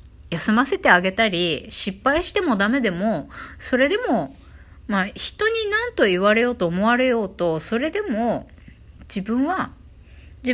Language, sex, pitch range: Japanese, female, 195-300 Hz